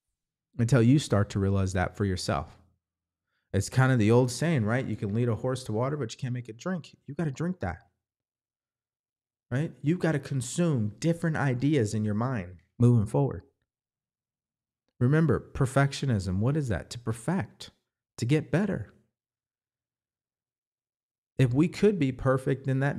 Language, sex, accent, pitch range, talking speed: English, male, American, 105-135 Hz, 160 wpm